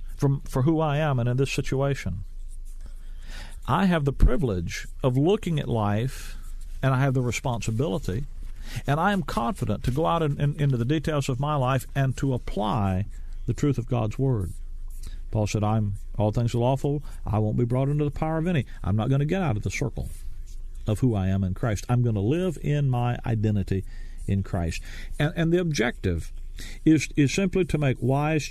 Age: 50-69